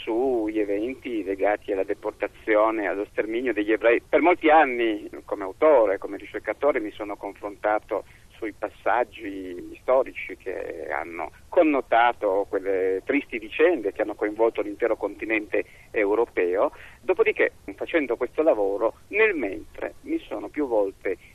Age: 50-69